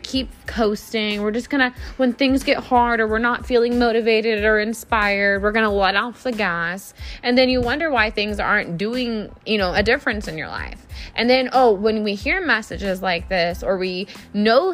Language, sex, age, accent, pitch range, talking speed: English, female, 20-39, American, 185-235 Hz, 200 wpm